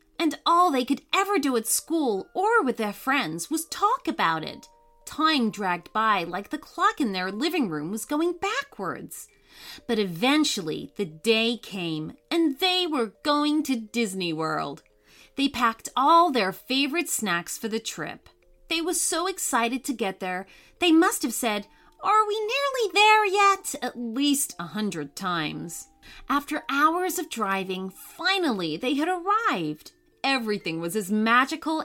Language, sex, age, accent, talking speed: English, female, 30-49, American, 155 wpm